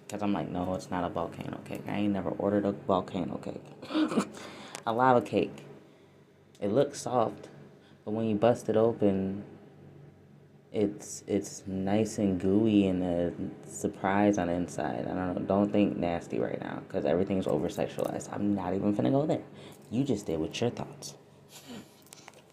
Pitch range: 90-110 Hz